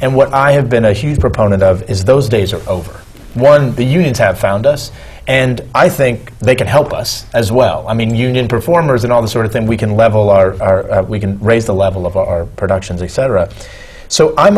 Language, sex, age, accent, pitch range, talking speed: English, male, 30-49, American, 100-135 Hz, 235 wpm